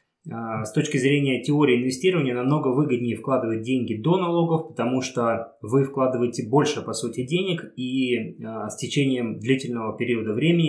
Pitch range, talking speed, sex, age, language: 120-160 Hz, 140 wpm, male, 20-39, Russian